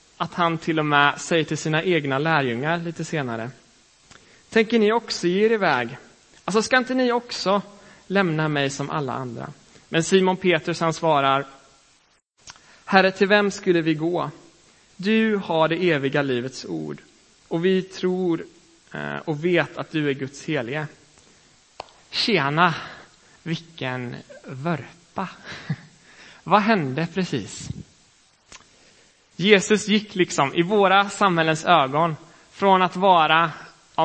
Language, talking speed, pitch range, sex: Swedish, 125 wpm, 150-185 Hz, male